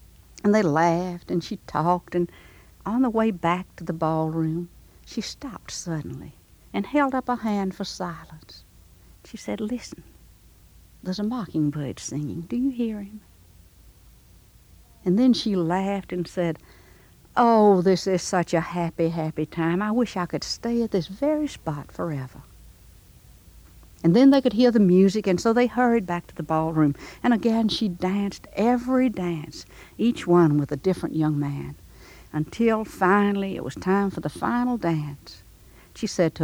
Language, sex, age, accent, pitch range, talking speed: English, female, 60-79, American, 140-205 Hz, 165 wpm